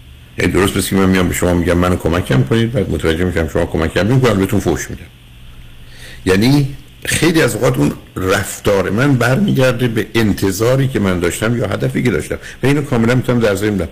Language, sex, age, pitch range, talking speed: Persian, male, 60-79, 80-115 Hz, 195 wpm